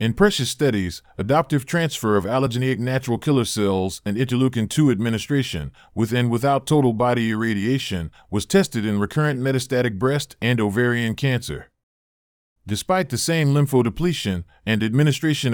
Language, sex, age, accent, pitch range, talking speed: English, male, 40-59, American, 110-140 Hz, 135 wpm